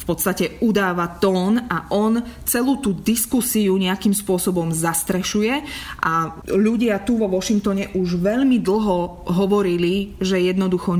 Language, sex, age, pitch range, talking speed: Slovak, female, 20-39, 175-210 Hz, 125 wpm